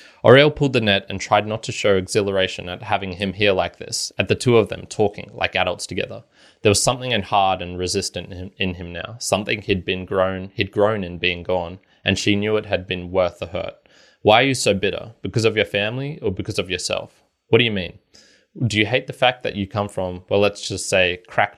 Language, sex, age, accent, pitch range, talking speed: English, male, 20-39, Australian, 90-105 Hz, 235 wpm